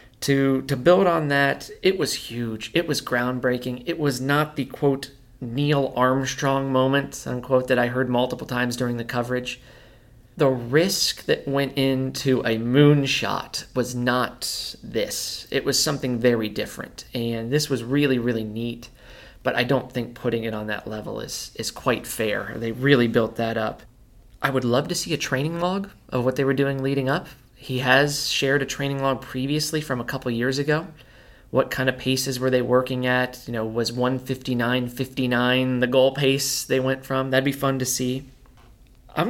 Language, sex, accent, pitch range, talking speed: English, male, American, 120-140 Hz, 180 wpm